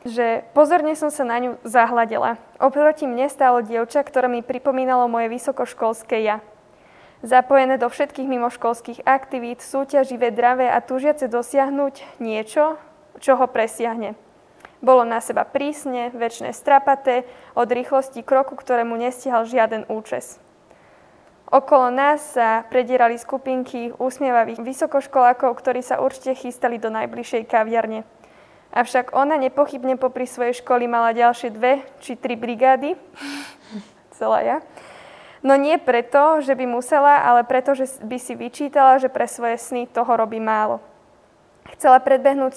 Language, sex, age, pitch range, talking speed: Slovak, female, 20-39, 235-275 Hz, 130 wpm